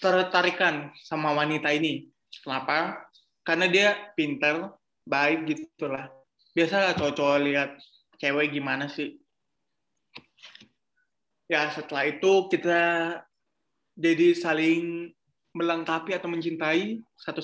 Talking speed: 95 wpm